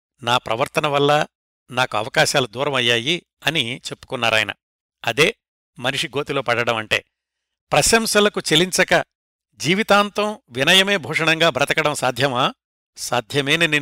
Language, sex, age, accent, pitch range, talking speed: Telugu, male, 60-79, native, 135-180 Hz, 90 wpm